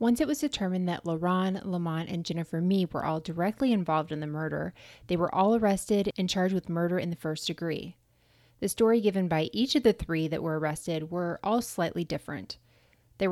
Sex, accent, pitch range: female, American, 160-200 Hz